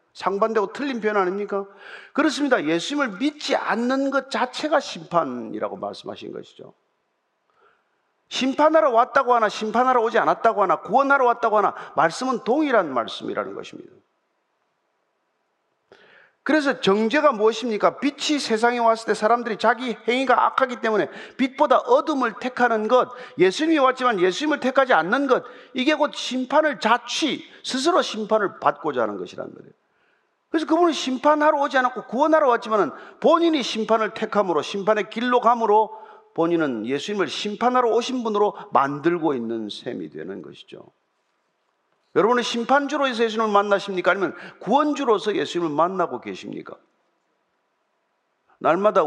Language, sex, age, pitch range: Korean, male, 40-59, 205-275 Hz